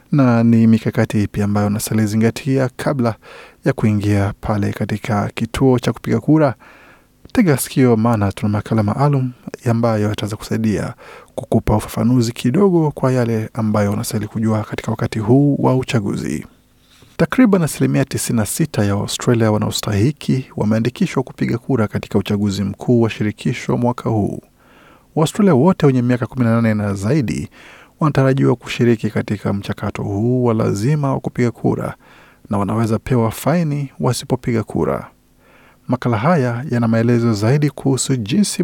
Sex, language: male, Swahili